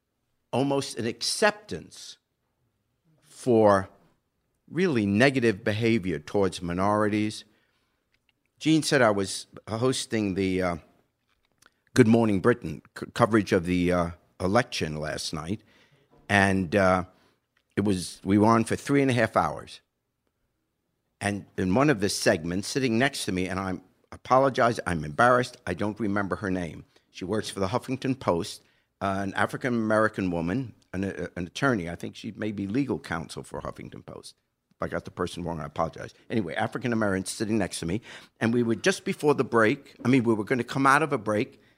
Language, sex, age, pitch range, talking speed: English, male, 60-79, 95-125 Hz, 165 wpm